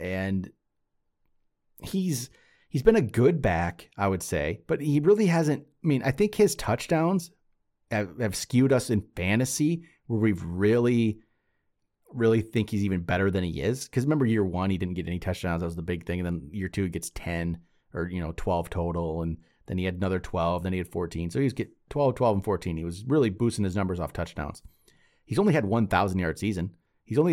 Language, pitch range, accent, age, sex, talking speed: English, 90-125 Hz, American, 30-49, male, 215 wpm